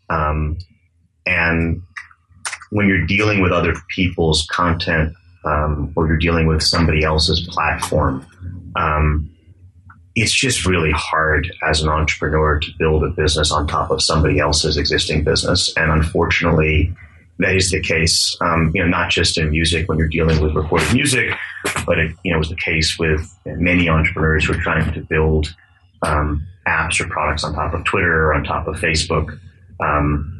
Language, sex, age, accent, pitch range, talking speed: English, male, 30-49, American, 75-90 Hz, 165 wpm